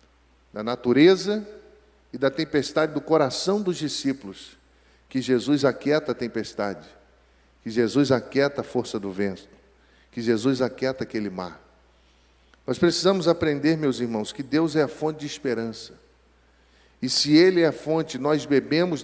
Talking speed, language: 145 wpm, Portuguese